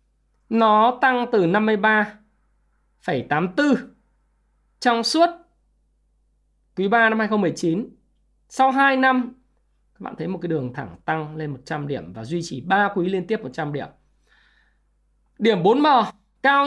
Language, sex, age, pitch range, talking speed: Vietnamese, male, 20-39, 155-195 Hz, 130 wpm